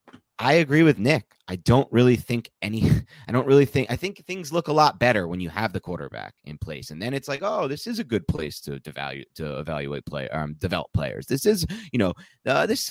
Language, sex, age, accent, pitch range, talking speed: English, male, 30-49, American, 95-140 Hz, 235 wpm